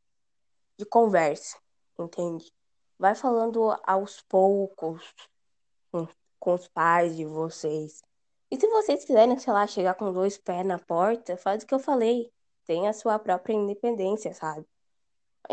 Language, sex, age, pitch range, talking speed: Portuguese, female, 10-29, 170-225 Hz, 140 wpm